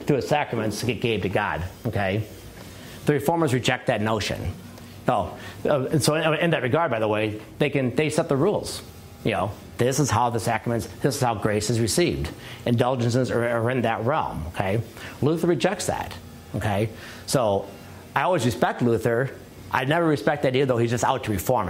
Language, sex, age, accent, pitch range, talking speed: English, male, 40-59, American, 105-130 Hz, 195 wpm